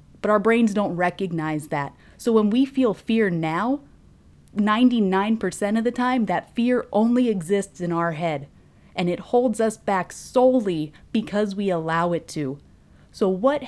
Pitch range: 170-220 Hz